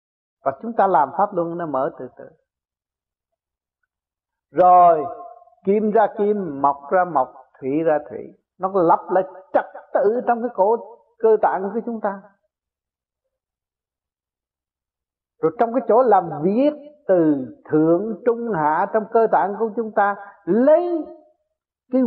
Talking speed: 140 wpm